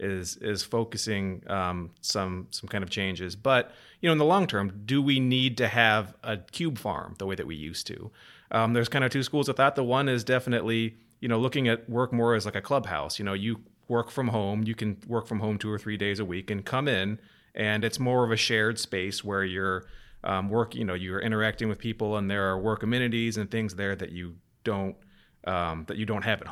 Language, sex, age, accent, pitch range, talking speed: English, male, 30-49, American, 100-120 Hz, 240 wpm